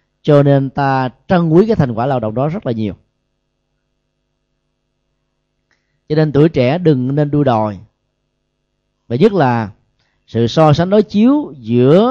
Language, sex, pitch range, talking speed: Vietnamese, male, 130-175 Hz, 155 wpm